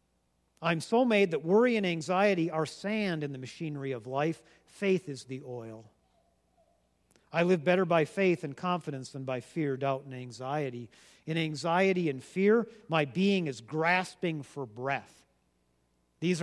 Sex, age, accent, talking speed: male, 50-69, American, 155 wpm